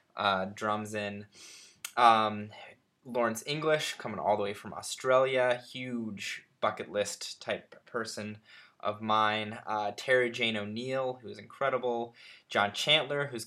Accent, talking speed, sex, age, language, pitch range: American, 130 wpm, male, 20-39, English, 105-125 Hz